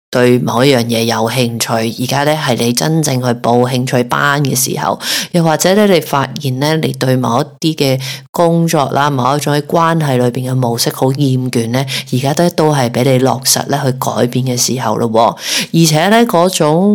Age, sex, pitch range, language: 30-49, female, 130-165 Hz, Chinese